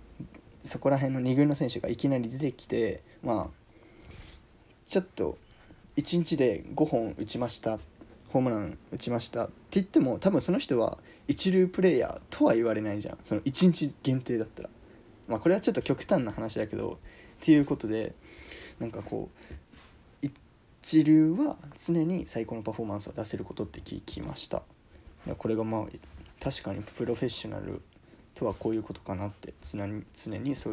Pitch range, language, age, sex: 110-160 Hz, Japanese, 20-39, male